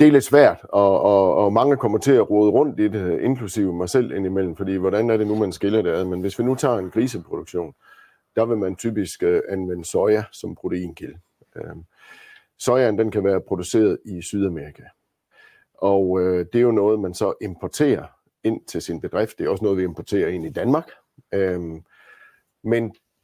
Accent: native